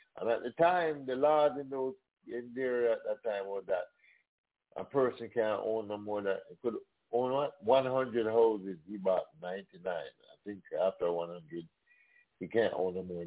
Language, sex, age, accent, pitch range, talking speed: English, male, 50-69, American, 110-150 Hz, 185 wpm